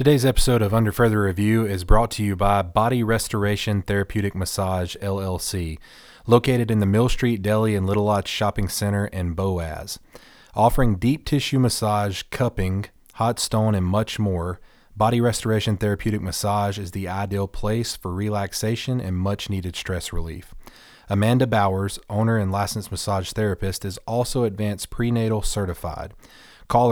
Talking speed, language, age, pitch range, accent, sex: 150 wpm, English, 30-49, 90-110 Hz, American, male